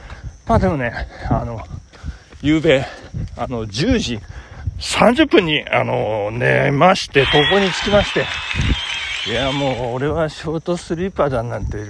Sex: male